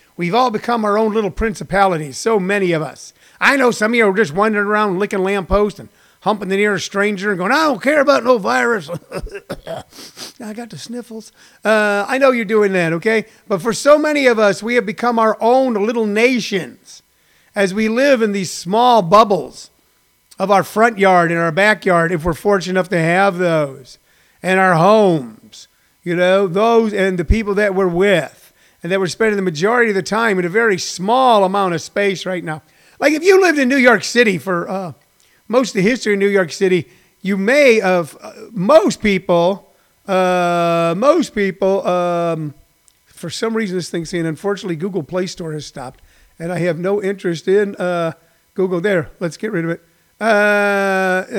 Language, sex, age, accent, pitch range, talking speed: English, male, 50-69, American, 175-220 Hz, 195 wpm